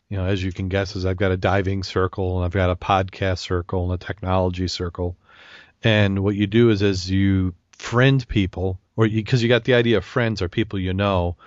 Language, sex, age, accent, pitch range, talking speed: English, male, 40-59, American, 90-110 Hz, 230 wpm